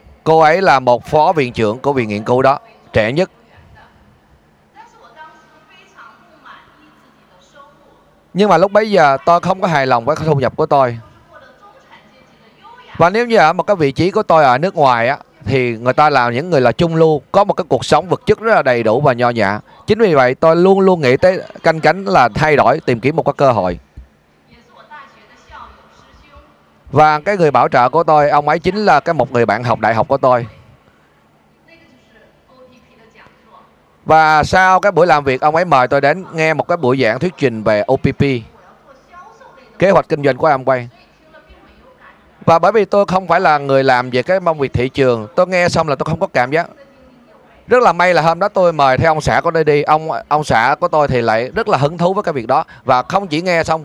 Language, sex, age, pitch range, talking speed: Vietnamese, male, 20-39, 125-175 Hz, 210 wpm